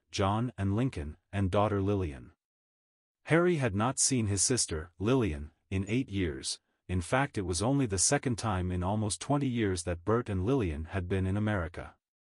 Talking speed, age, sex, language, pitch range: 175 wpm, 40-59, male, English, 90-120 Hz